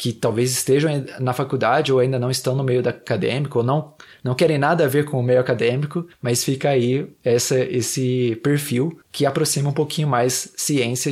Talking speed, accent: 185 wpm, Brazilian